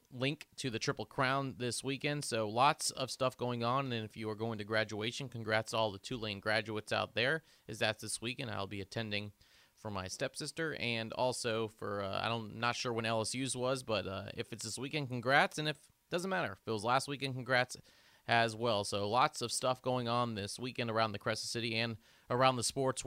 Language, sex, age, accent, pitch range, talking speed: English, male, 30-49, American, 110-135 Hz, 220 wpm